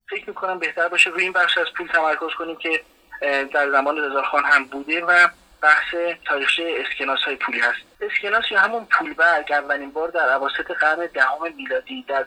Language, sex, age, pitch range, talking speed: Persian, male, 30-49, 140-185 Hz, 180 wpm